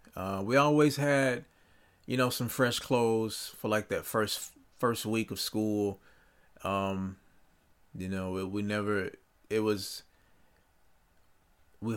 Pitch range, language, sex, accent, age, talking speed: 95-120 Hz, English, male, American, 30-49, 130 wpm